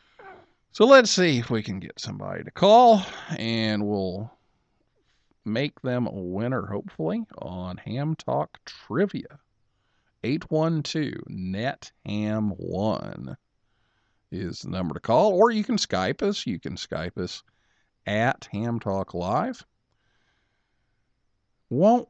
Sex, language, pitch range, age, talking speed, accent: male, English, 95-140 Hz, 50-69, 120 wpm, American